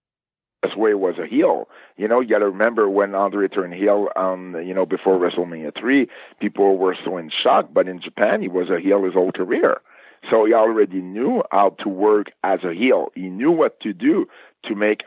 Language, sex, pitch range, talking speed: English, male, 95-110 Hz, 215 wpm